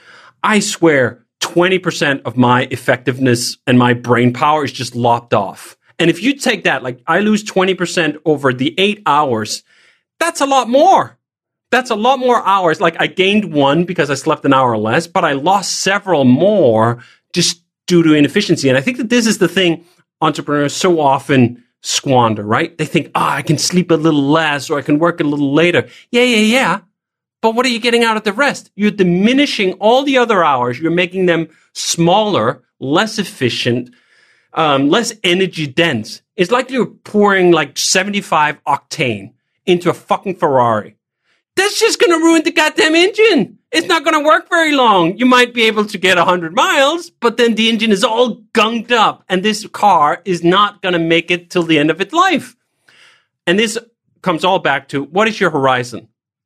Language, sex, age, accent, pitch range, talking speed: English, male, 40-59, American, 150-225 Hz, 190 wpm